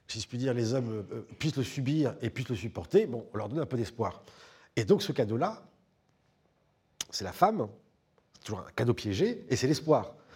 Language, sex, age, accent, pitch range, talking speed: French, male, 50-69, French, 120-160 Hz, 205 wpm